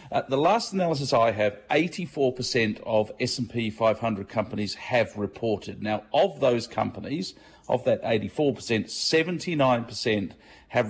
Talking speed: 120 wpm